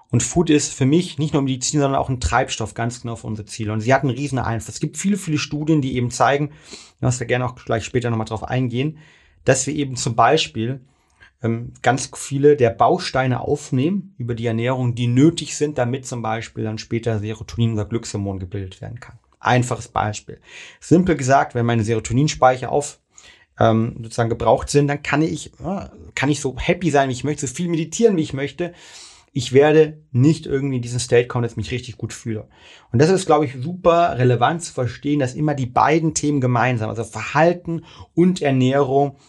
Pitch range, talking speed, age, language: 115-150 Hz, 200 wpm, 30-49, German